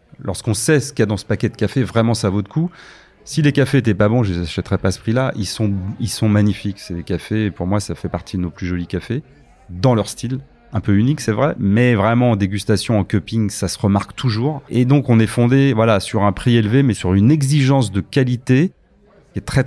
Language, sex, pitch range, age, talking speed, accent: French, male, 95-125 Hz, 30-49, 260 wpm, French